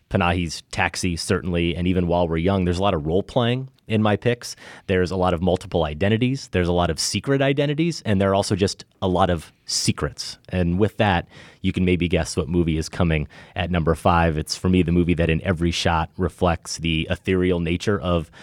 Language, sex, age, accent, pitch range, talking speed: English, male, 30-49, American, 85-100 Hz, 215 wpm